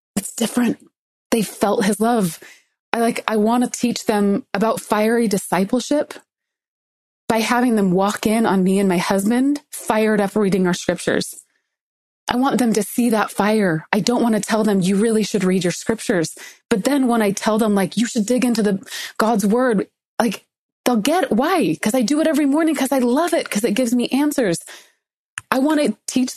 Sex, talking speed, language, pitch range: female, 200 wpm, English, 200-255 Hz